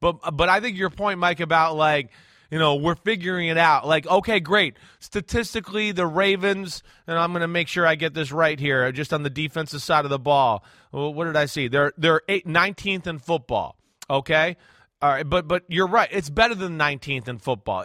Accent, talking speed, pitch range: American, 215 wpm, 155-195 Hz